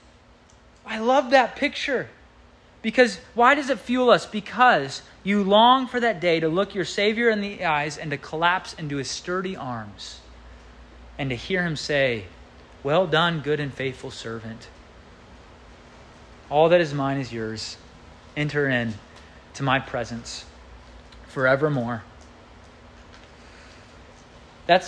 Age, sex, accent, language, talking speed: 30-49, male, American, English, 130 wpm